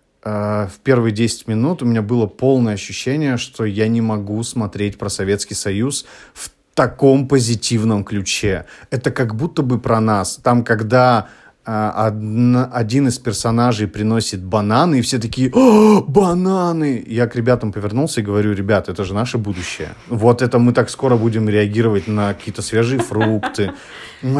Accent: native